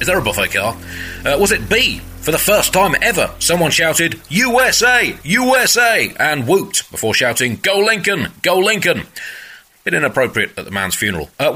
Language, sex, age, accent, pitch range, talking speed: English, male, 30-49, British, 100-165 Hz, 175 wpm